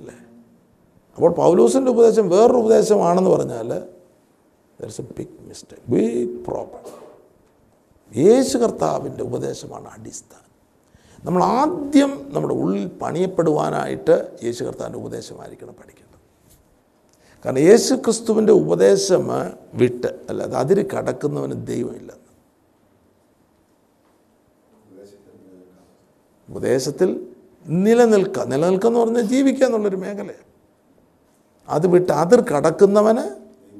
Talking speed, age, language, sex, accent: 80 wpm, 50-69, Malayalam, male, native